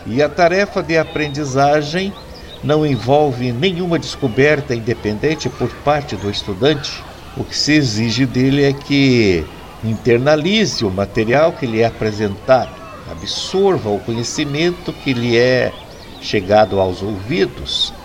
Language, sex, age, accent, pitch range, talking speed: Portuguese, male, 60-79, Brazilian, 115-155 Hz, 125 wpm